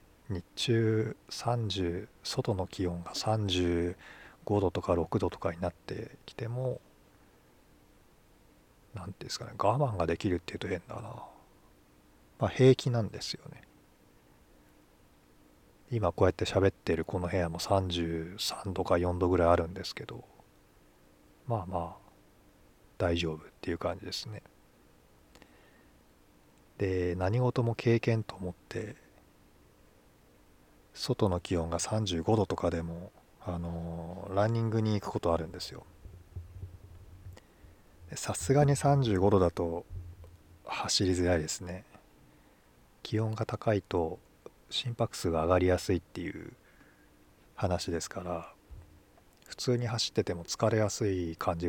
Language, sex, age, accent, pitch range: Japanese, male, 40-59, native, 85-110 Hz